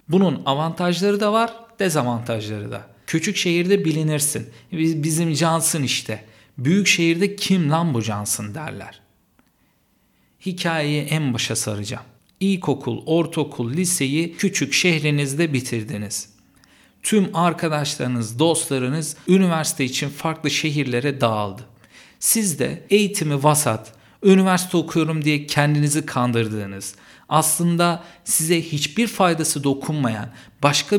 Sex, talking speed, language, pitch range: male, 100 wpm, Turkish, 125-170 Hz